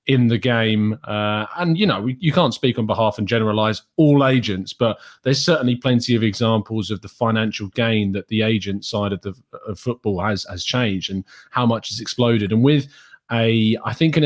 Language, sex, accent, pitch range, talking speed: English, male, British, 110-145 Hz, 200 wpm